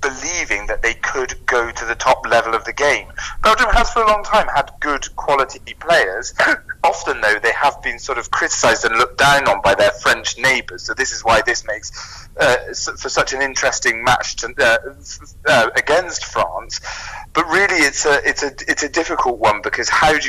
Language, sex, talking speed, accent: English, male, 200 wpm, British